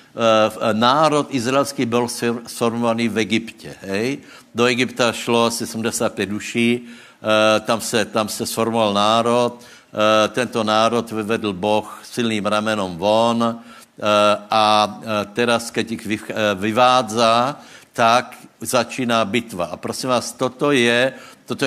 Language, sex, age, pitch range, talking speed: Slovak, male, 60-79, 105-125 Hz, 110 wpm